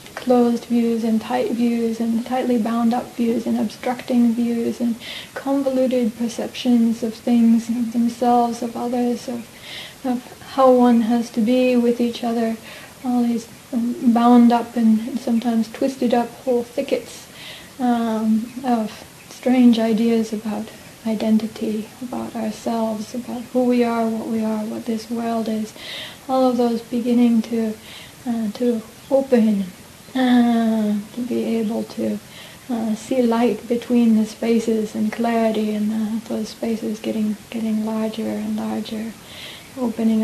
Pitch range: 220-245 Hz